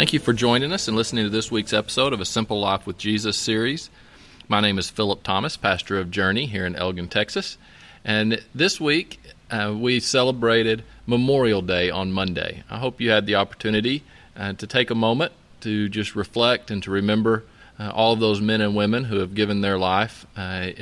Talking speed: 200 wpm